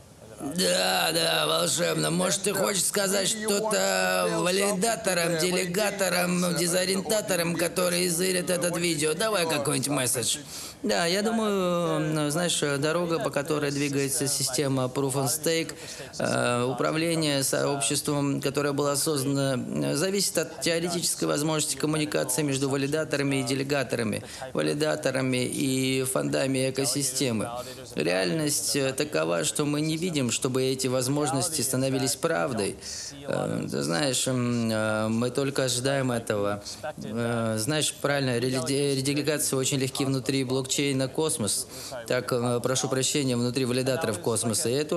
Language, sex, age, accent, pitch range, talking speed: Russian, male, 20-39, native, 125-155 Hz, 105 wpm